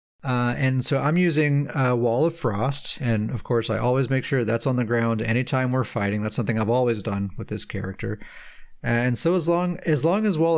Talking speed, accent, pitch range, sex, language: 220 wpm, American, 115-145 Hz, male, English